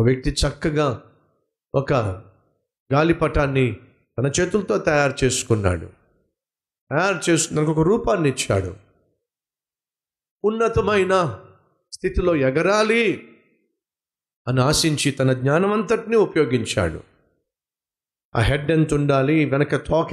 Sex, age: male, 50-69